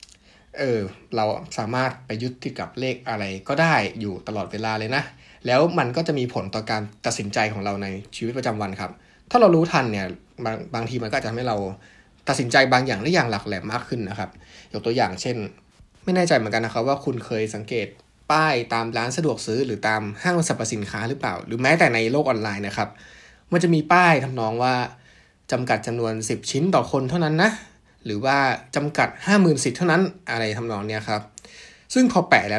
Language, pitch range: Thai, 105-140 Hz